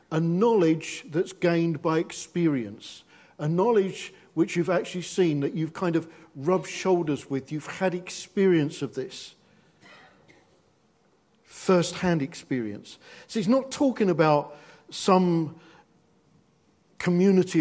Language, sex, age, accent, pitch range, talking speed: English, male, 50-69, British, 145-185 Hz, 110 wpm